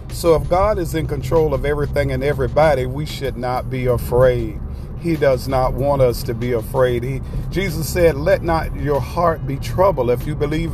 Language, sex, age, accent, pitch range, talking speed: English, male, 50-69, American, 130-165 Hz, 190 wpm